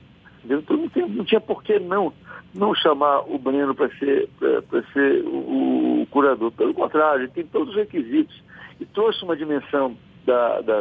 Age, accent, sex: 60-79, Brazilian, male